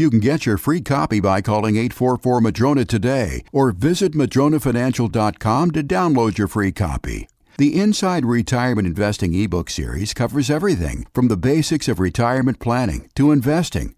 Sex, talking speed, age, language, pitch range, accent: male, 145 wpm, 60-79, English, 105-140 Hz, American